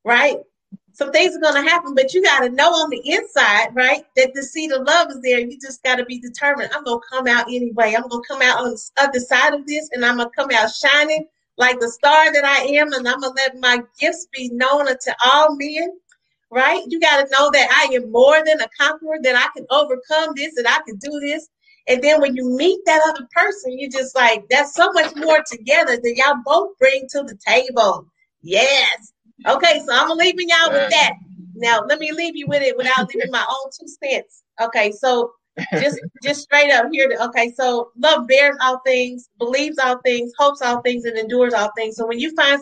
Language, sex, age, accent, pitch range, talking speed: English, female, 40-59, American, 245-290 Hz, 230 wpm